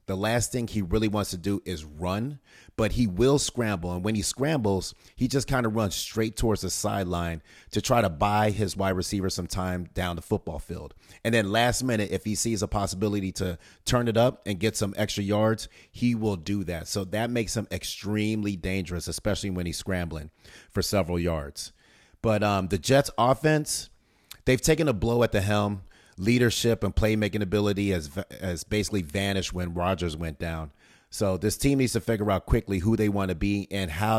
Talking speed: 200 wpm